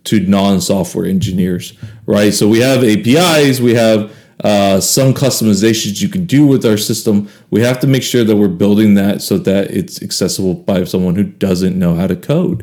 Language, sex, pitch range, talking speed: English, male, 100-130 Hz, 190 wpm